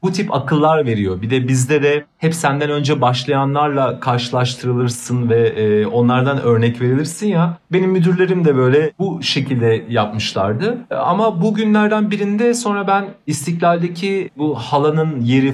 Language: Turkish